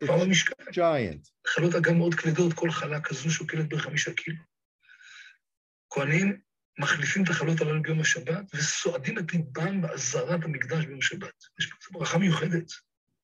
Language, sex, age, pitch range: English, male, 50-69, 160-180 Hz